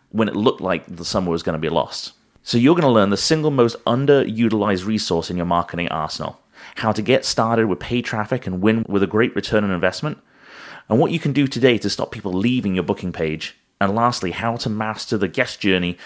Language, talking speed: English, 230 wpm